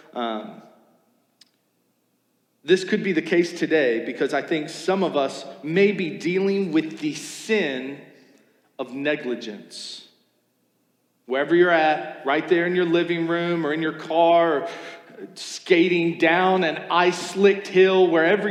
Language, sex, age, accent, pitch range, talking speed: English, male, 40-59, American, 135-175 Hz, 135 wpm